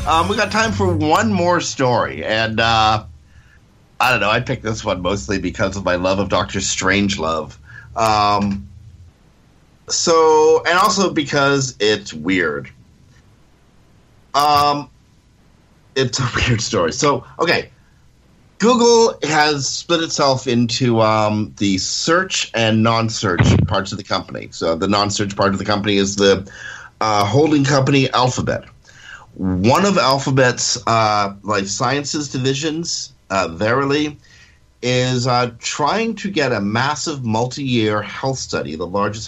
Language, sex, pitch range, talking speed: English, male, 100-140 Hz, 135 wpm